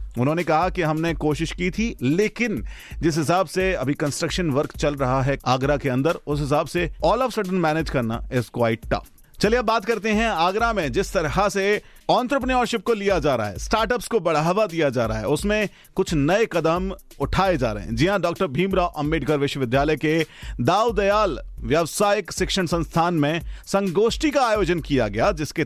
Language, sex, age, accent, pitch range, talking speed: Hindi, male, 40-59, native, 135-190 Hz, 185 wpm